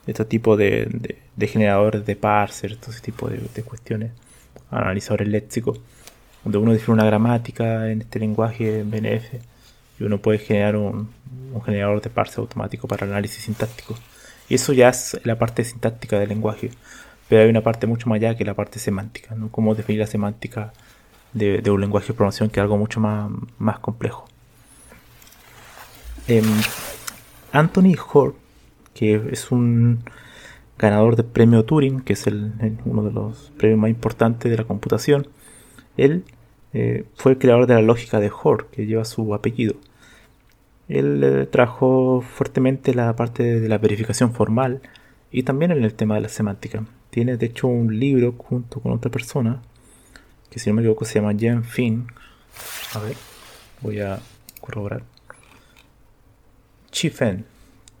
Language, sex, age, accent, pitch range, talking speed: Spanish, male, 20-39, Argentinian, 105-120 Hz, 160 wpm